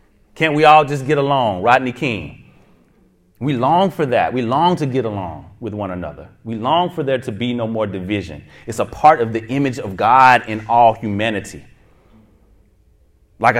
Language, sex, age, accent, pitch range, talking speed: English, male, 30-49, American, 90-125 Hz, 180 wpm